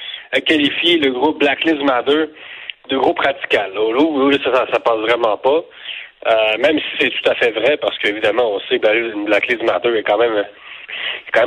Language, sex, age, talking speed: French, male, 40-59, 185 wpm